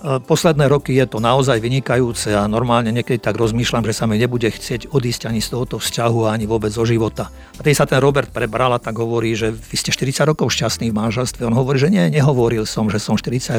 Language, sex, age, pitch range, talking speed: Slovak, male, 50-69, 120-140 Hz, 220 wpm